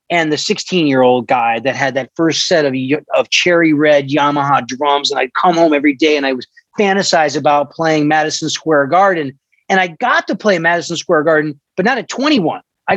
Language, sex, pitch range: English, male, 160-215 Hz